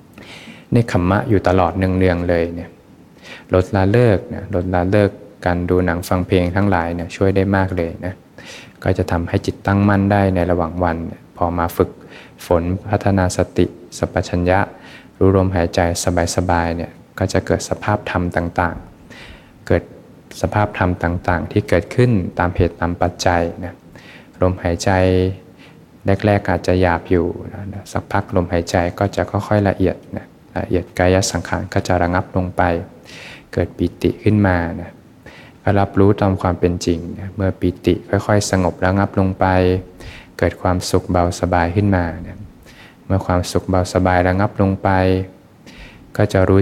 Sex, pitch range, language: male, 85-95 Hz, Thai